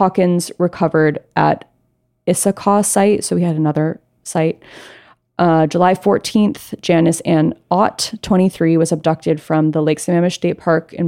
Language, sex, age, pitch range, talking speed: English, female, 20-39, 155-175 Hz, 140 wpm